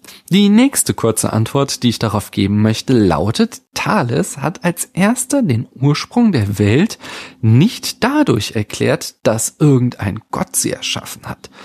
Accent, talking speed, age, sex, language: German, 140 wpm, 40-59, male, German